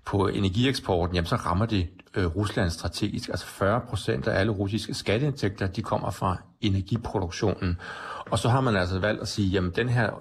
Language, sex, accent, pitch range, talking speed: Danish, male, native, 90-110 Hz, 180 wpm